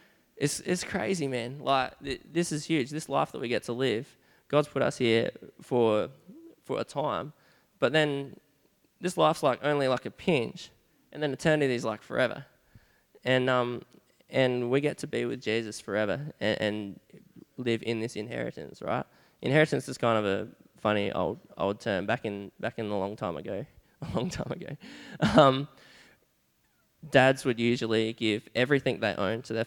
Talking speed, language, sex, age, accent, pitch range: 175 wpm, English, male, 10-29, Australian, 110-135 Hz